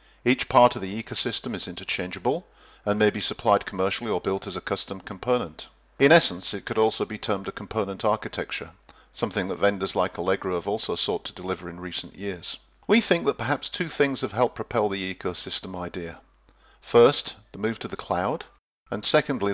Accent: British